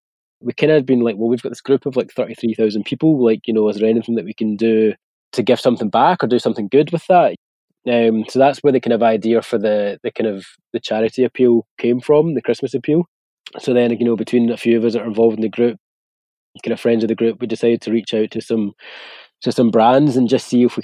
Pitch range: 110-125 Hz